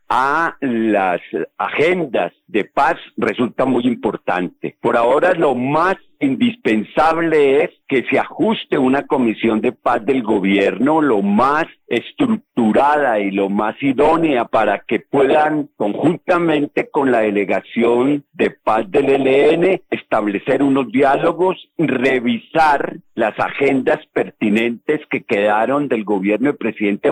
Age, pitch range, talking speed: 50-69, 110-155 Hz, 120 wpm